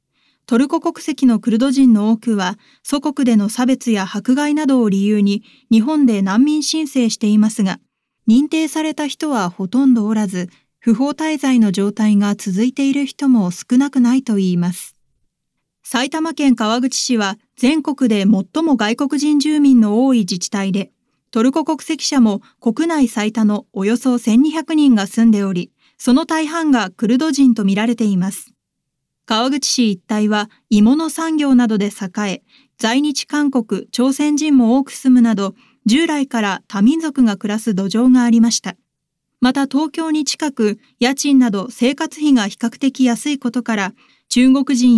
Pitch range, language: 210-275 Hz, Japanese